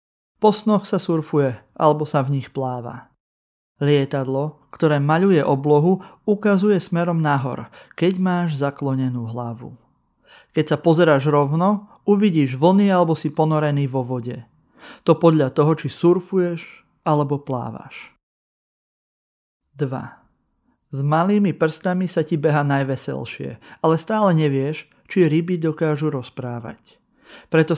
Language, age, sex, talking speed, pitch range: Slovak, 30-49, male, 115 wpm, 130-165 Hz